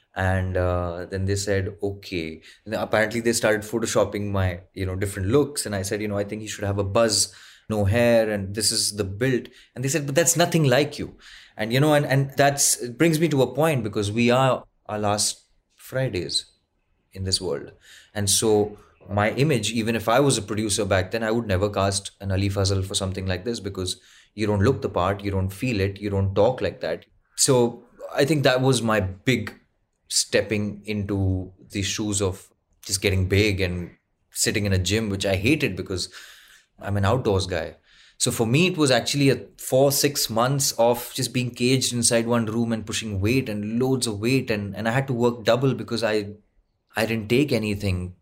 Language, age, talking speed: English, 20-39, 205 wpm